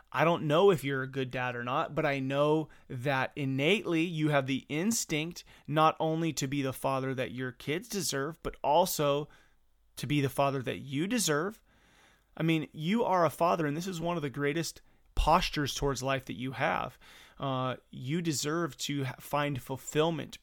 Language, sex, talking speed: English, male, 185 wpm